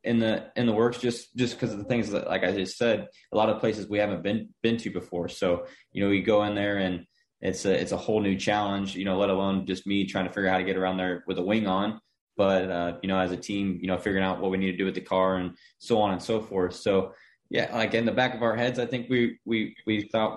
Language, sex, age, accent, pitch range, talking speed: English, male, 20-39, American, 95-105 Hz, 295 wpm